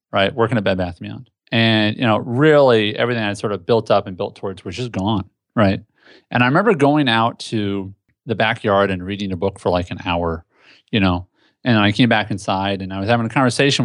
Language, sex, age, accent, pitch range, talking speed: English, male, 30-49, American, 100-125 Hz, 230 wpm